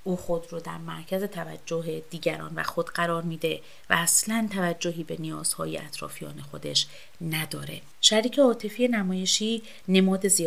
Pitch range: 160-185 Hz